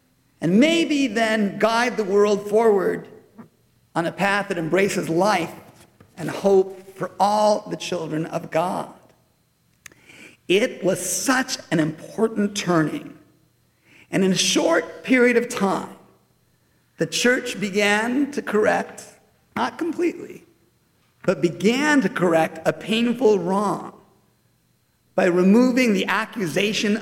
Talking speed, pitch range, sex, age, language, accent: 115 wpm, 175-235 Hz, male, 50-69, English, American